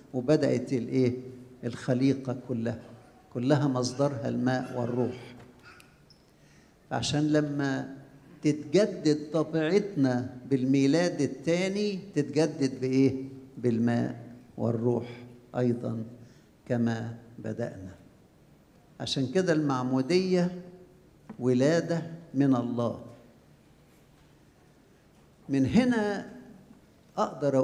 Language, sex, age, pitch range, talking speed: English, male, 50-69, 125-155 Hz, 65 wpm